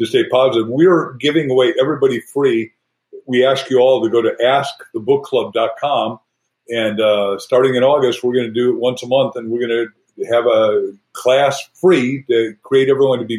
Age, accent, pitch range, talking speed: 50-69, American, 120-150 Hz, 195 wpm